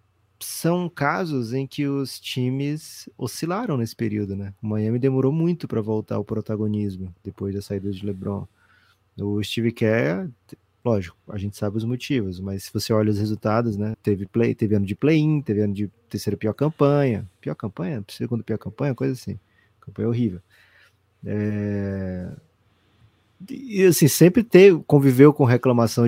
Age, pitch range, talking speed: 20-39, 105-125 Hz, 155 wpm